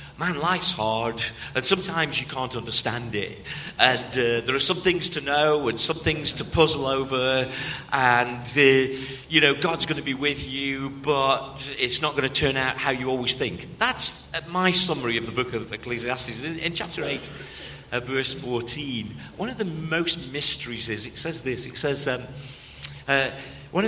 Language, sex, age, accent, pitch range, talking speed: English, male, 50-69, British, 115-150 Hz, 185 wpm